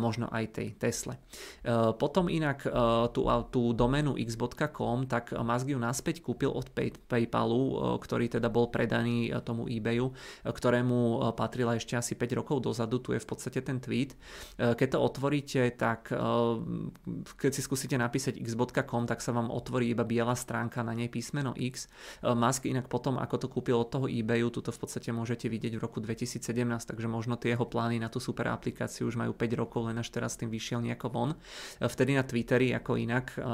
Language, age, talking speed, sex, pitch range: Czech, 30-49, 175 wpm, male, 115-125 Hz